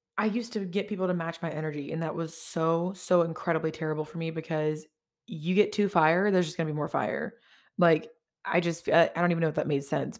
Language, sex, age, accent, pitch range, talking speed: English, female, 20-39, American, 155-175 Hz, 240 wpm